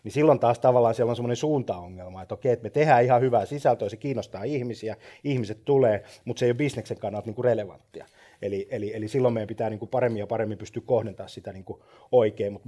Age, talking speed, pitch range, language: 30-49, 215 wpm, 110-130 Hz, Finnish